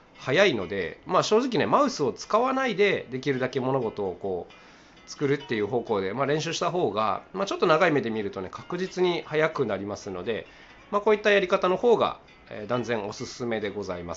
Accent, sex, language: native, male, Japanese